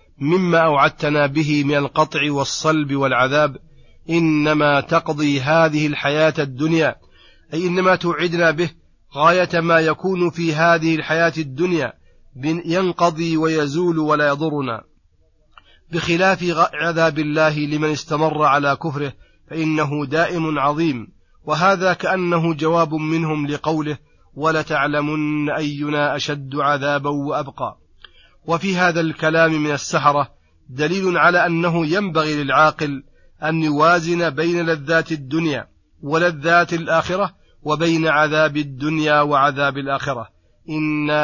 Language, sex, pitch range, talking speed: Arabic, male, 150-170 Hz, 100 wpm